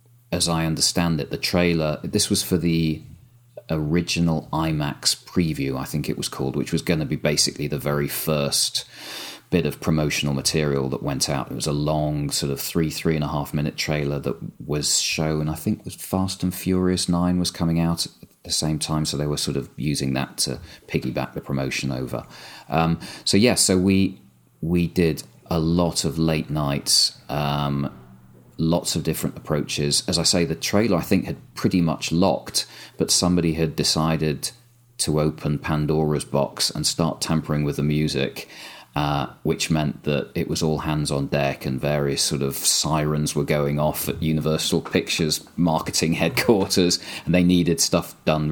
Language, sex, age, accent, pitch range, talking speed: English, male, 30-49, British, 75-85 Hz, 180 wpm